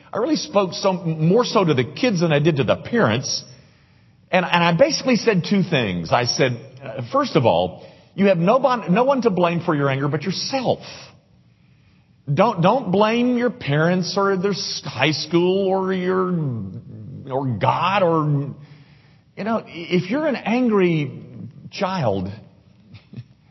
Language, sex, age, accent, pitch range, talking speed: English, male, 50-69, American, 125-190 Hz, 155 wpm